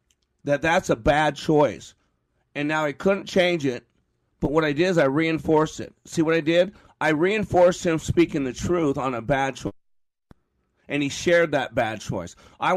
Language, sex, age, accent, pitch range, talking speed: English, male, 40-59, American, 140-175 Hz, 190 wpm